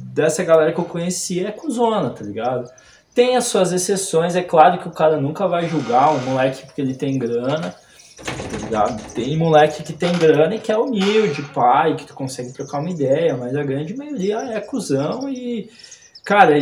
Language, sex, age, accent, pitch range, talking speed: Portuguese, male, 20-39, Brazilian, 130-175 Hz, 190 wpm